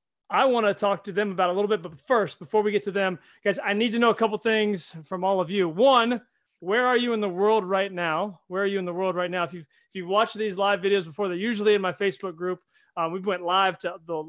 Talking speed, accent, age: 280 wpm, American, 30-49